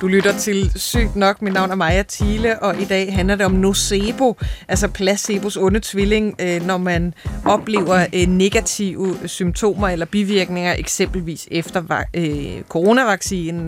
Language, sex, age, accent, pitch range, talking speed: Danish, female, 30-49, native, 175-210 Hz, 135 wpm